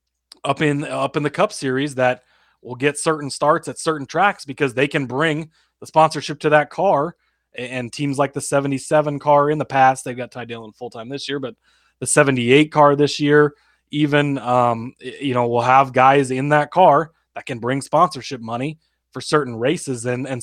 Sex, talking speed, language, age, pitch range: male, 195 wpm, English, 20-39, 130-150 Hz